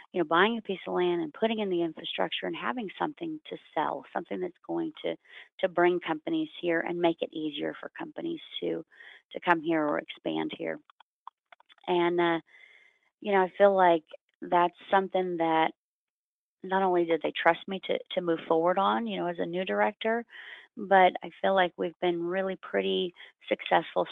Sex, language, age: female, English, 30-49